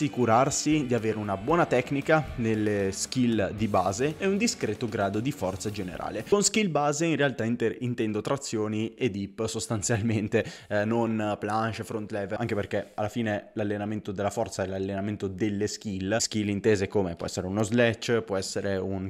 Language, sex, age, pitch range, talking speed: Italian, male, 20-39, 105-125 Hz, 170 wpm